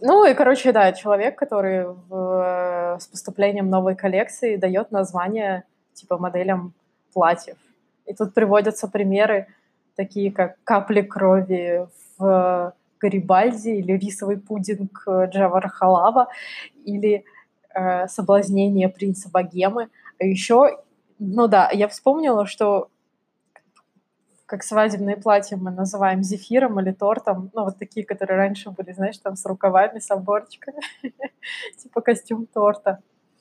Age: 20-39